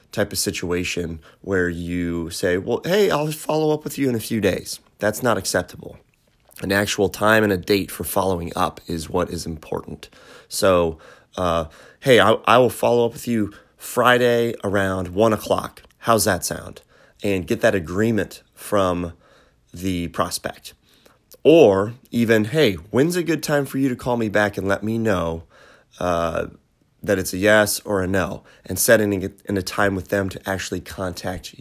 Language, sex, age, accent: English, male, 30-49, American